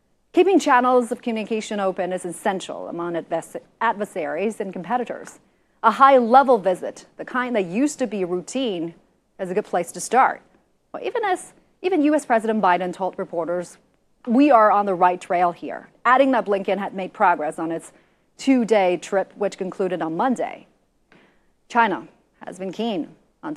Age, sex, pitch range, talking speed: 30-49, female, 185-245 Hz, 155 wpm